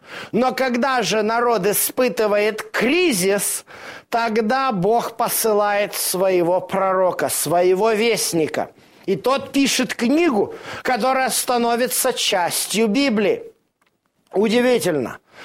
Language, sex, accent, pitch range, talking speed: Russian, male, native, 205-250 Hz, 85 wpm